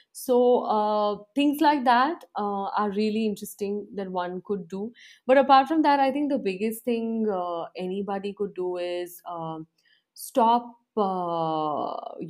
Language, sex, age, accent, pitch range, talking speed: English, female, 30-49, Indian, 170-205 Hz, 145 wpm